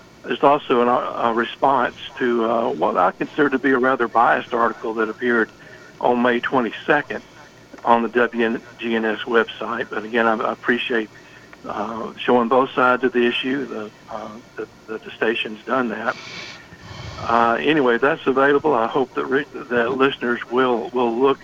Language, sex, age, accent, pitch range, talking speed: English, male, 60-79, American, 115-130 Hz, 160 wpm